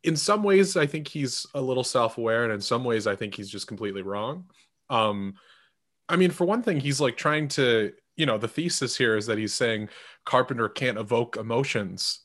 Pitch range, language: 110-150 Hz, English